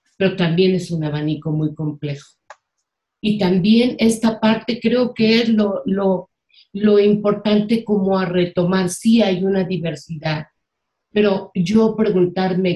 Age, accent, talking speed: 50-69, Mexican, 130 wpm